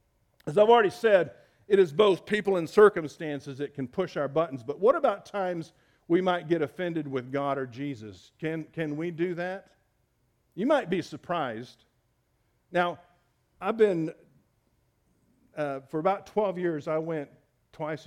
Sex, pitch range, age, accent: male, 125-165 Hz, 50-69, American